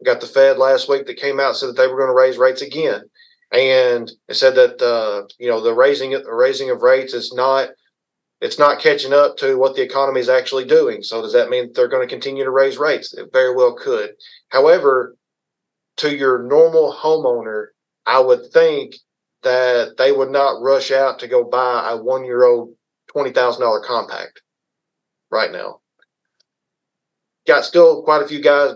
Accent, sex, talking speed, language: American, male, 190 wpm, English